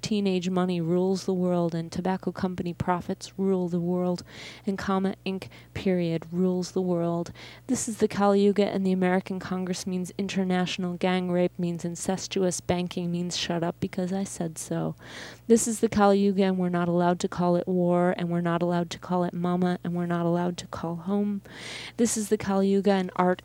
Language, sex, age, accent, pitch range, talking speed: English, female, 30-49, American, 175-195 Hz, 195 wpm